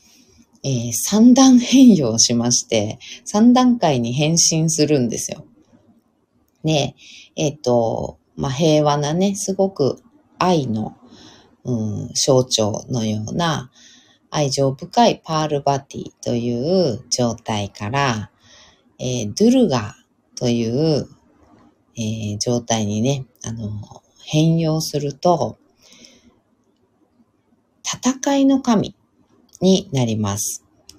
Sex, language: female, Japanese